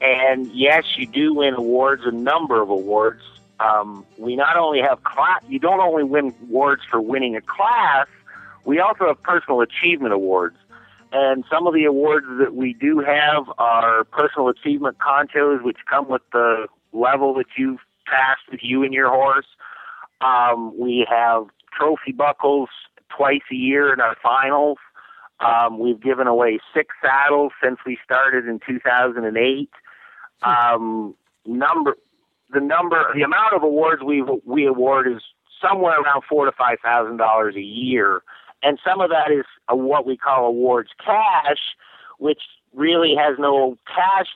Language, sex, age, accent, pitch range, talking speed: English, male, 50-69, American, 120-145 Hz, 155 wpm